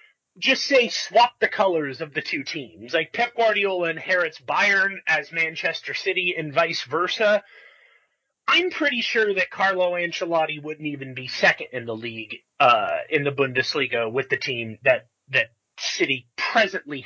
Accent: American